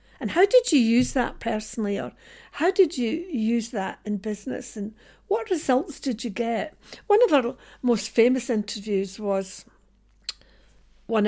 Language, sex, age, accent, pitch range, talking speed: English, female, 60-79, British, 210-275 Hz, 155 wpm